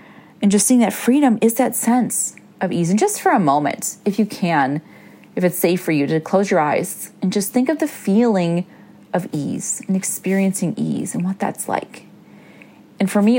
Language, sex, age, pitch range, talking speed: English, female, 30-49, 185-240 Hz, 200 wpm